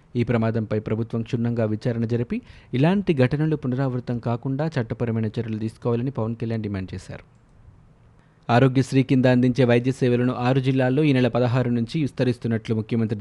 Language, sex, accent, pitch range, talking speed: Telugu, male, native, 115-135 Hz, 135 wpm